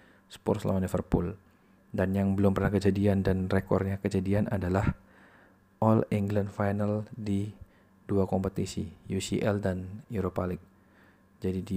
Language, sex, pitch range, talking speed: Indonesian, male, 95-105 Hz, 120 wpm